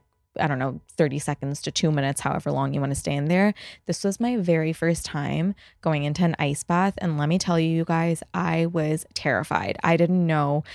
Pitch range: 155-190 Hz